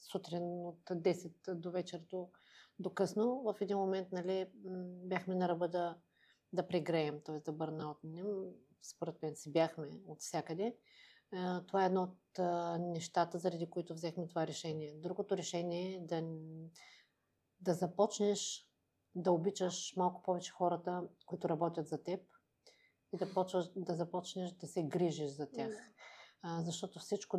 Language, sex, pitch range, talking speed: Bulgarian, female, 165-190 Hz, 145 wpm